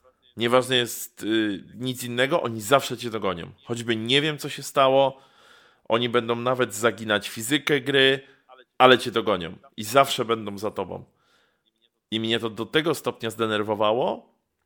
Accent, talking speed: native, 145 wpm